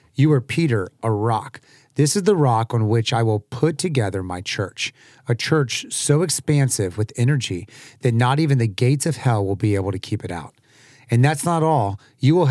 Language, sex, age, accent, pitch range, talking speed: English, male, 30-49, American, 115-145 Hz, 205 wpm